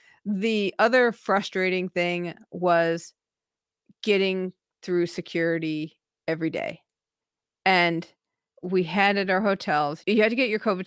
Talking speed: 120 wpm